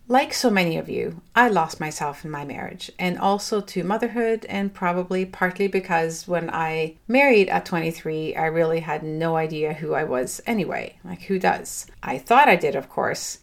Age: 40-59